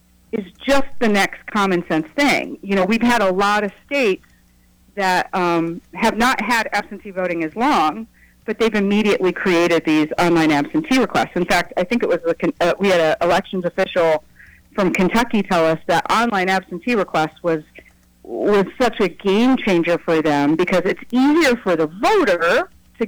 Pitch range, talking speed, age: 170-215 Hz, 180 wpm, 50-69